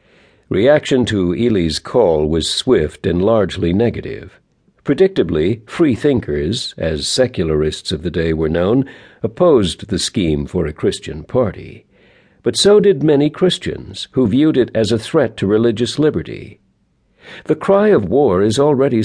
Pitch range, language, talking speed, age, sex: 85-120 Hz, English, 145 wpm, 60-79, male